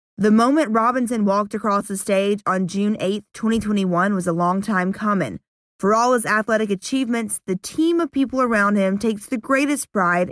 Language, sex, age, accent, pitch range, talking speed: English, female, 20-39, American, 195-235 Hz, 180 wpm